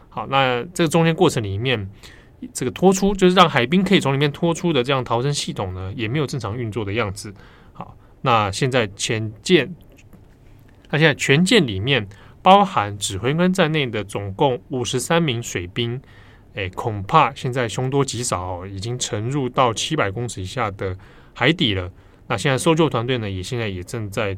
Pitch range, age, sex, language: 100-140 Hz, 20-39, male, Chinese